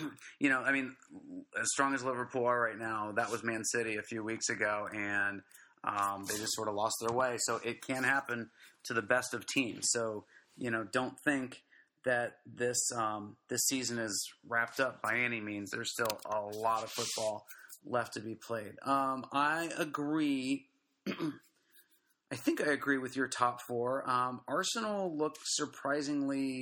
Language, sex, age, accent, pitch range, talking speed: English, male, 30-49, American, 115-135 Hz, 175 wpm